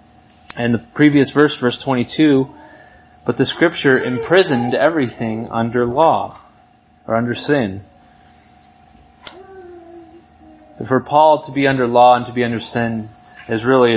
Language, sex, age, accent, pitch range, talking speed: English, male, 20-39, American, 115-140 Hz, 125 wpm